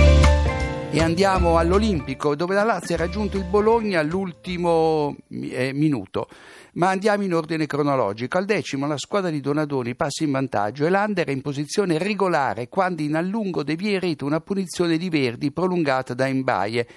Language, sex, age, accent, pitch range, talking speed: Italian, male, 60-79, native, 135-180 Hz, 155 wpm